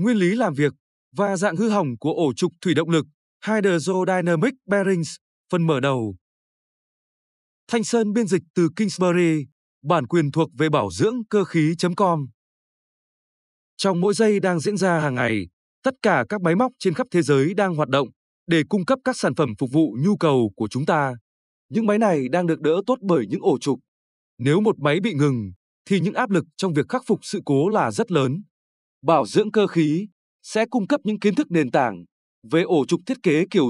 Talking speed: 200 wpm